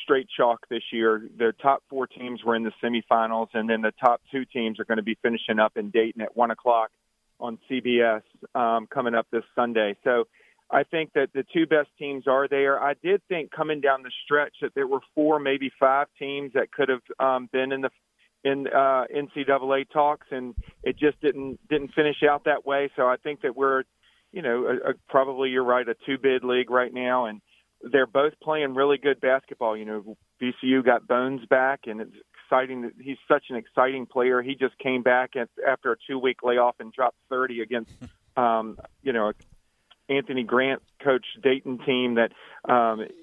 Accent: American